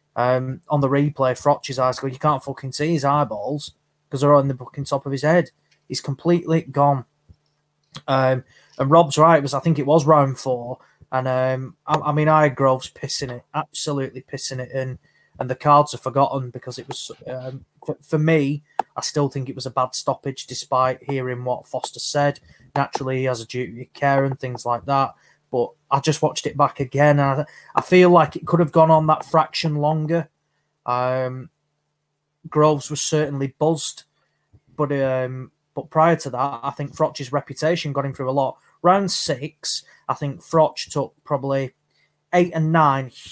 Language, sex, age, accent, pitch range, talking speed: English, male, 20-39, British, 130-150 Hz, 190 wpm